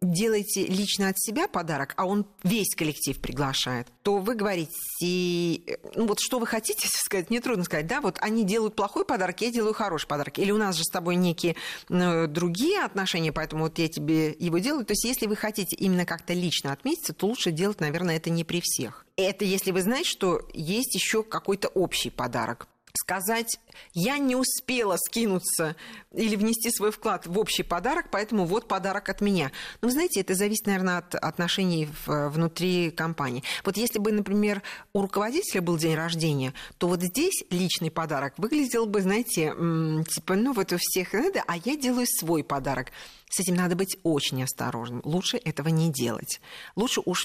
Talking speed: 180 wpm